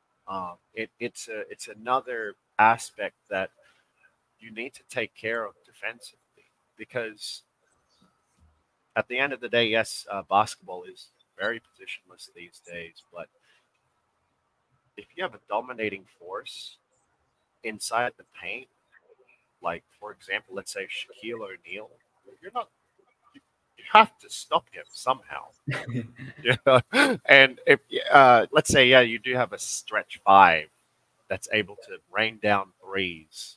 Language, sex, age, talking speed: Filipino, male, 30-49, 130 wpm